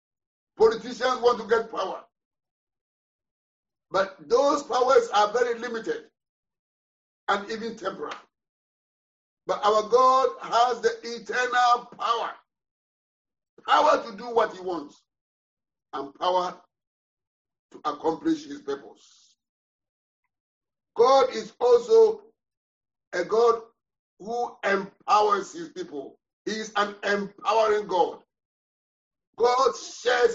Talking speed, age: 95 wpm, 60-79